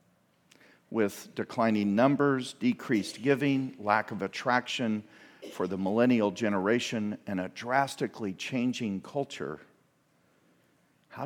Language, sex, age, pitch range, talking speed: English, male, 50-69, 105-130 Hz, 95 wpm